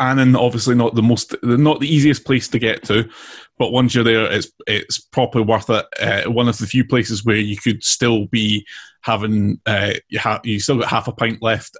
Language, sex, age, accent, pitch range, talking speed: English, male, 20-39, British, 105-120 Hz, 220 wpm